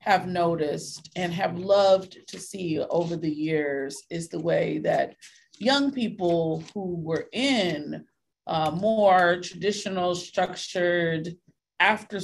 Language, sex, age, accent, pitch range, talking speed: English, female, 30-49, American, 170-210 Hz, 120 wpm